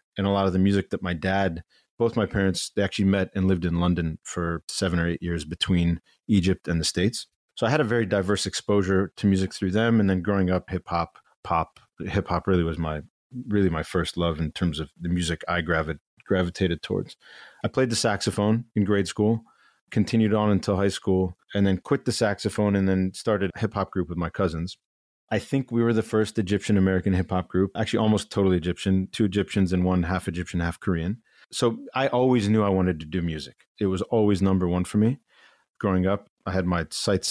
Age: 30-49